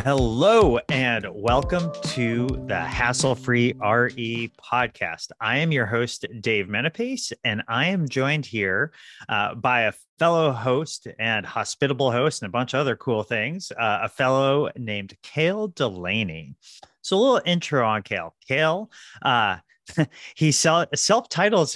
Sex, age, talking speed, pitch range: male, 30-49, 140 wpm, 105-140 Hz